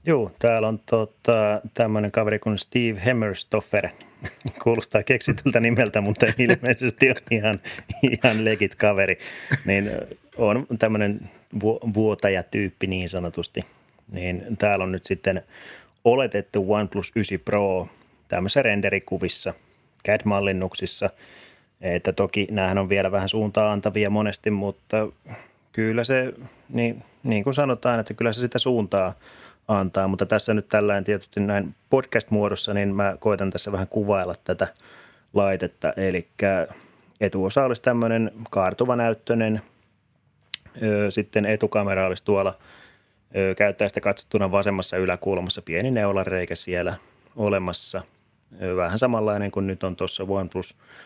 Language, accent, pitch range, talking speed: Finnish, native, 95-110 Hz, 115 wpm